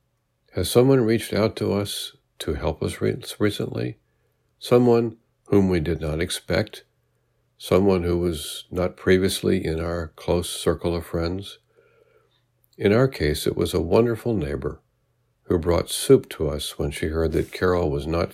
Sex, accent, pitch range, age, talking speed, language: male, American, 80-120 Hz, 60-79, 155 wpm, English